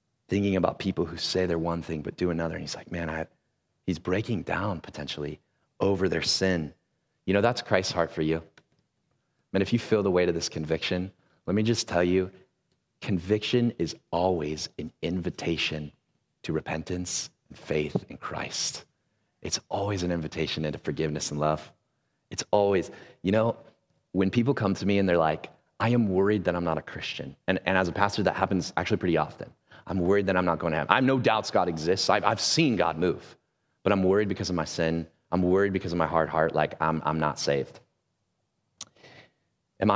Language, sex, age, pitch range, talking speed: English, male, 30-49, 80-100 Hz, 200 wpm